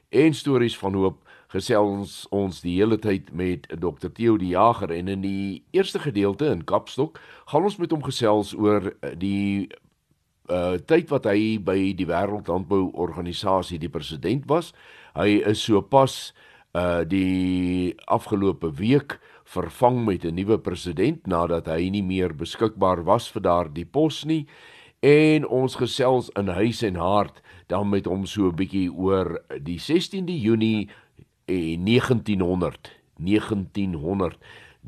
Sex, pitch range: male, 90-115 Hz